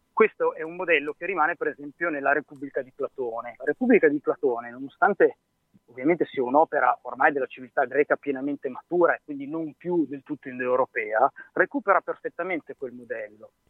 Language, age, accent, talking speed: Italian, 30-49, native, 160 wpm